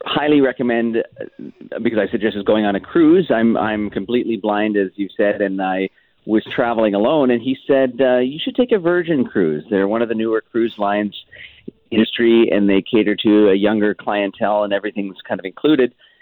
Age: 40-59